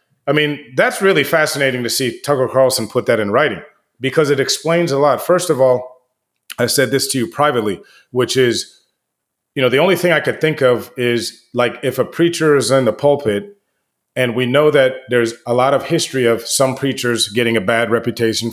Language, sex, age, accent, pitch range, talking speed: English, male, 30-49, American, 115-145 Hz, 205 wpm